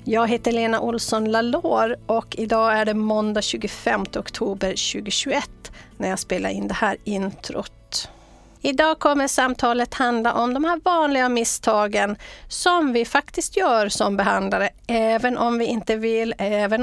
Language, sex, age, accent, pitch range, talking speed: English, female, 40-59, Swedish, 220-270 Hz, 145 wpm